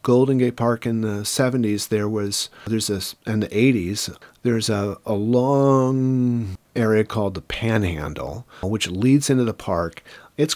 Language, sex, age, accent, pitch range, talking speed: English, male, 40-59, American, 105-135 Hz, 155 wpm